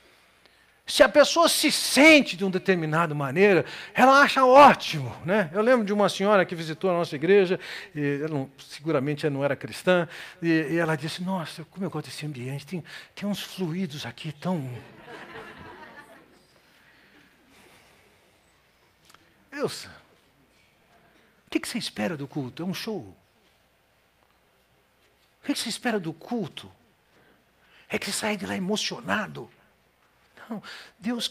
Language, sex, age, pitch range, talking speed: Portuguese, male, 60-79, 170-240 Hz, 135 wpm